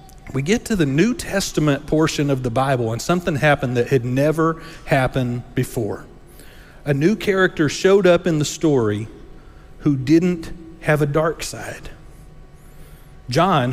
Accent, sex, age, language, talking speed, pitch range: American, male, 40-59, English, 145 wpm, 135-190 Hz